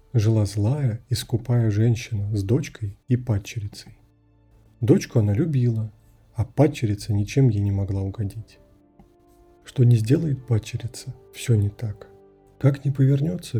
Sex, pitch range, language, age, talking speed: male, 110-135 Hz, Russian, 40-59, 130 wpm